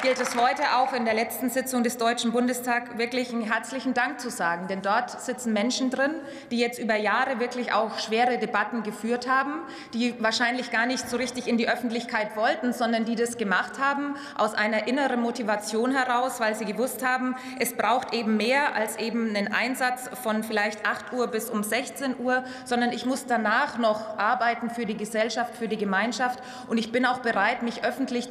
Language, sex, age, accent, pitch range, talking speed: German, female, 20-39, German, 215-245 Hz, 195 wpm